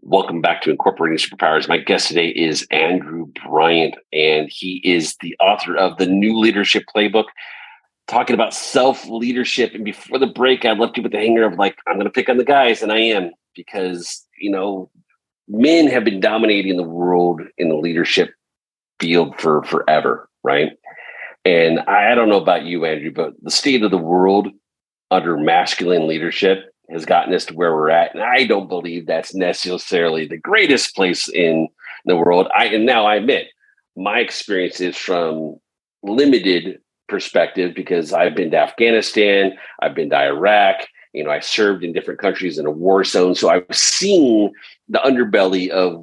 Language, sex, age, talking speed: English, male, 40-59, 175 wpm